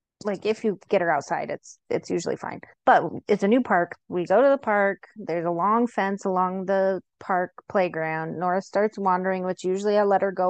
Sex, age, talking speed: female, 20-39, 210 wpm